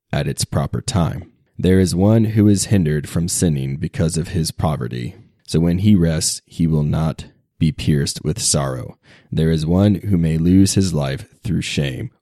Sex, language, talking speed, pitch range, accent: male, English, 180 wpm, 75-95 Hz, American